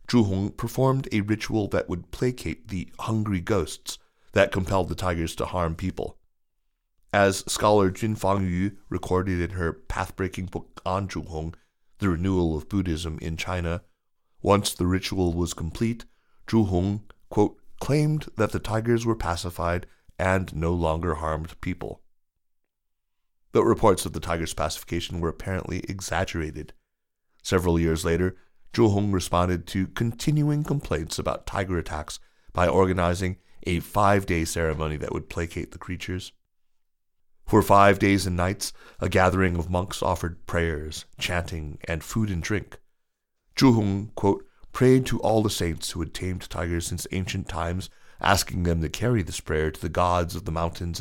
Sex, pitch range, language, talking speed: male, 85-100 Hz, English, 150 wpm